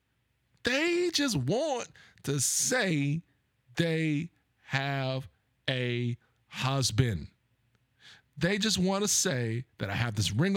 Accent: American